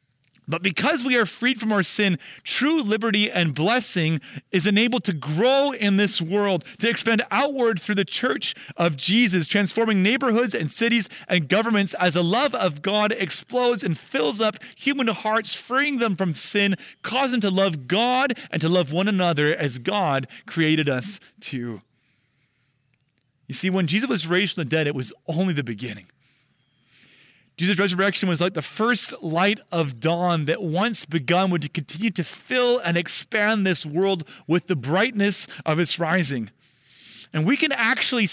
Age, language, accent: 30-49, English, American